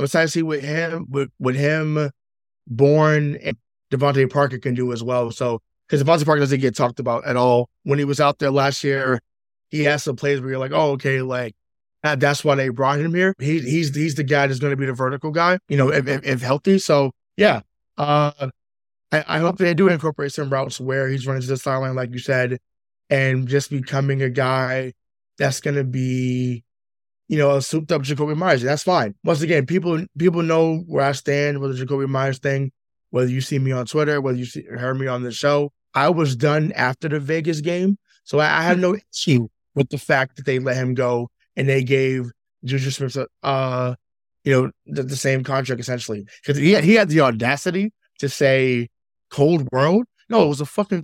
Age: 20-39